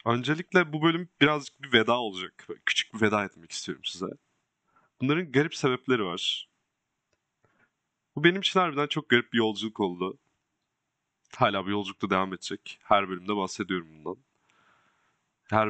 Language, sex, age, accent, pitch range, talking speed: Turkish, male, 30-49, native, 95-130 Hz, 140 wpm